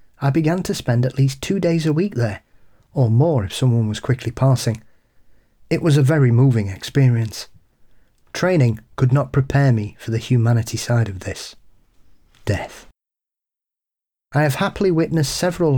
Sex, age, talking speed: male, 40-59, 155 wpm